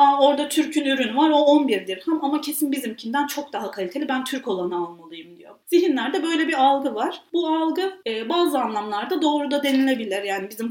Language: Turkish